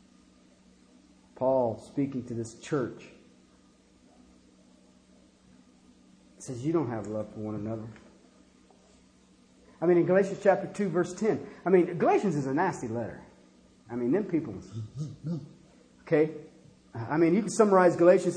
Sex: male